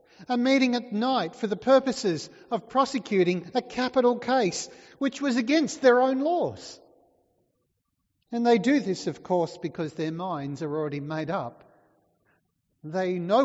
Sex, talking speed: male, 145 wpm